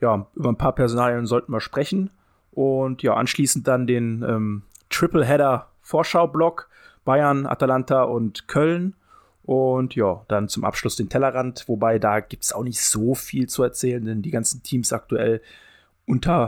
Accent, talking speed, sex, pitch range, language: German, 160 wpm, male, 115-145 Hz, German